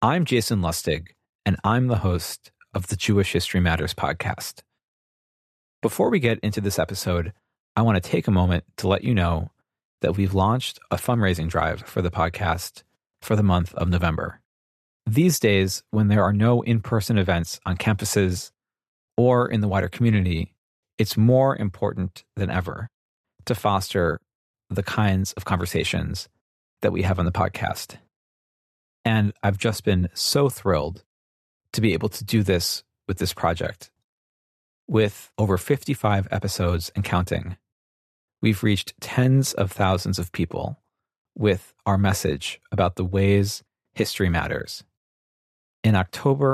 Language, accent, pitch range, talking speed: English, American, 90-110 Hz, 145 wpm